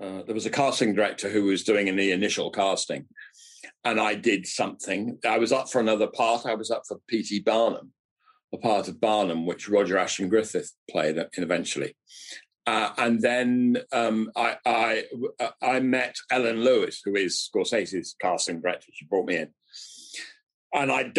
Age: 50-69